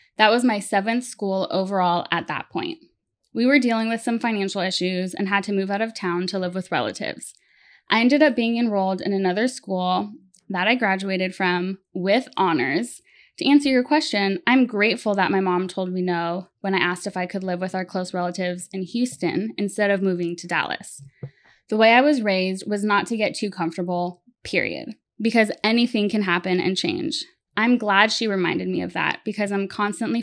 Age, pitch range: 10-29, 185-225 Hz